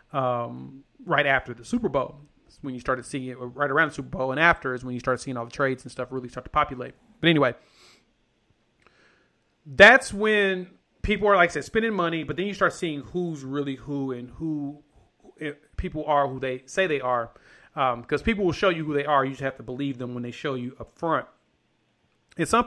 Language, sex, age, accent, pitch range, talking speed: English, male, 30-49, American, 130-165 Hz, 220 wpm